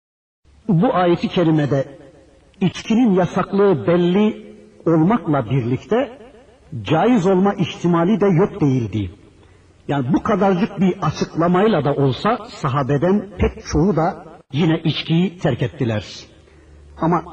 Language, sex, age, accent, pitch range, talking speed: Turkish, male, 60-79, native, 125-185 Hz, 105 wpm